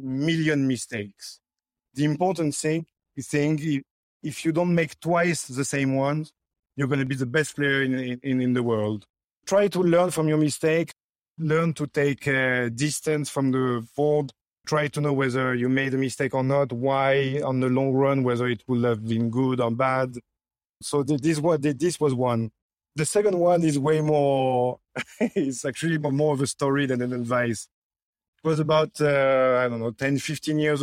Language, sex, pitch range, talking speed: English, male, 130-155 Hz, 185 wpm